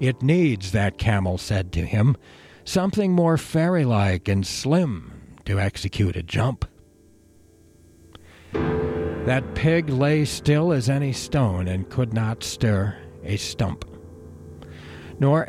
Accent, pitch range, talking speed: American, 85-140 Hz, 115 wpm